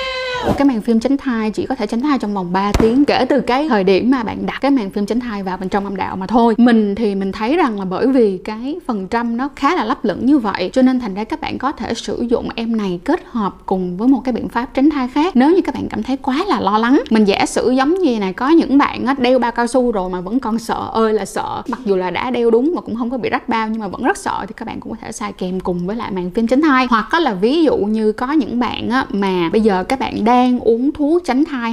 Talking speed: 300 wpm